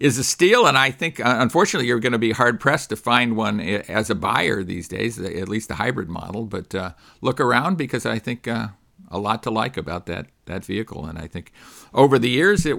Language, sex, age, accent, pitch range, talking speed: English, male, 50-69, American, 105-135 Hz, 225 wpm